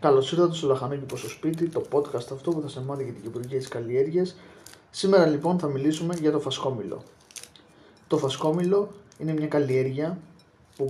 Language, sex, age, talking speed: Greek, male, 20-39, 170 wpm